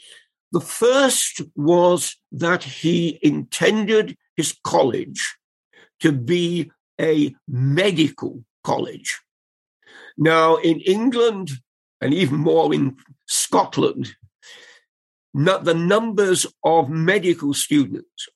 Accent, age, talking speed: British, 50-69, 90 wpm